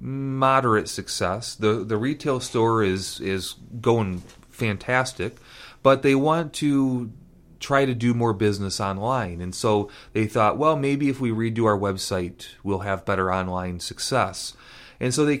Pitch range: 100-130 Hz